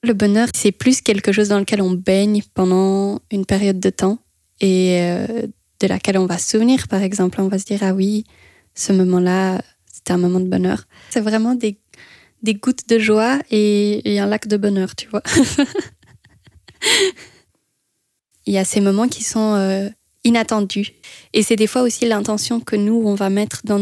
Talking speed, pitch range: 185 wpm, 190-215 Hz